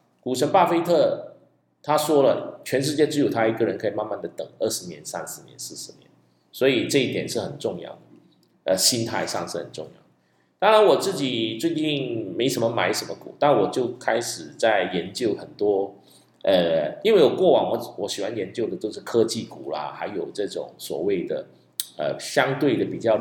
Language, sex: Chinese, male